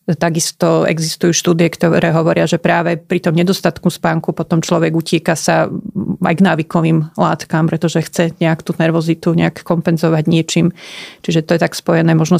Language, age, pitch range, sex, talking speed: Slovak, 30-49, 165-180 Hz, female, 160 wpm